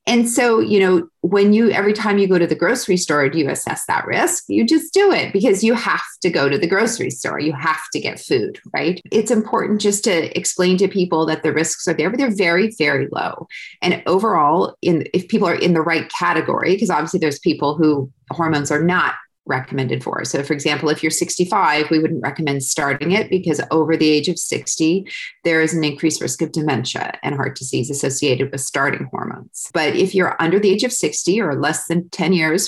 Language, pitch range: English, 150-200 Hz